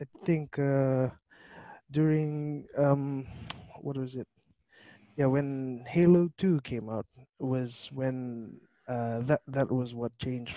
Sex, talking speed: male, 125 wpm